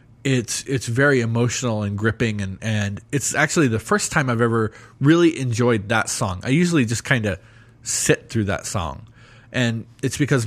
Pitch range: 110-130 Hz